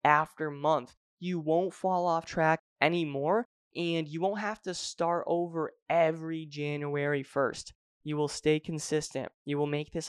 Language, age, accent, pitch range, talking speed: English, 20-39, American, 145-175 Hz, 155 wpm